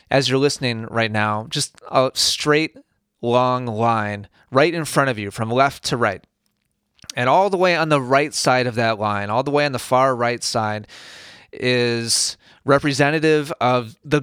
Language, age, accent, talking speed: English, 30-49, American, 175 wpm